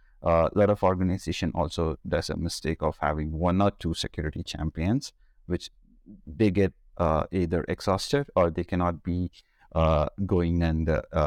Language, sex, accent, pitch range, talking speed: English, male, Indian, 80-90 Hz, 160 wpm